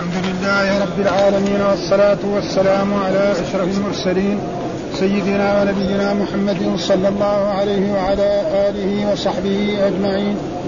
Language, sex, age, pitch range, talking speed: Arabic, male, 50-69, 205-230 Hz, 110 wpm